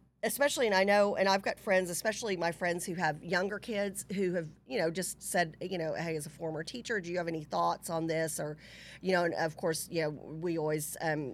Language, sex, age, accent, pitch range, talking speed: English, female, 40-59, American, 155-190 Hz, 245 wpm